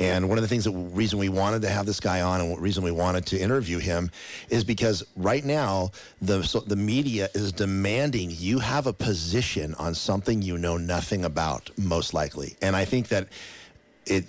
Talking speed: 205 wpm